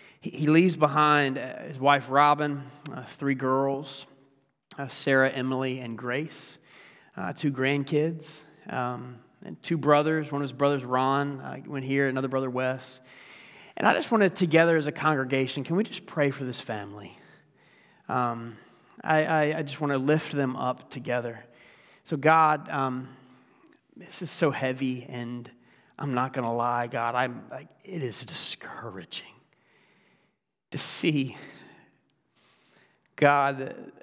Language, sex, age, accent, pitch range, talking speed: English, male, 30-49, American, 130-150 Hz, 145 wpm